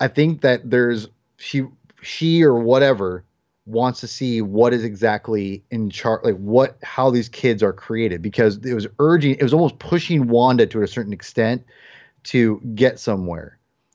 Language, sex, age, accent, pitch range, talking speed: English, male, 30-49, American, 110-135 Hz, 170 wpm